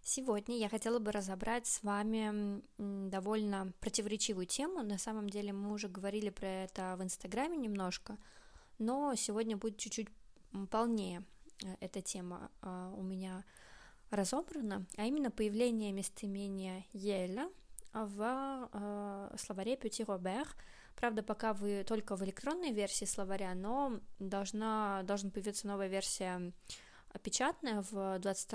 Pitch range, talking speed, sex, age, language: 195-235 Hz, 120 wpm, female, 20-39, Russian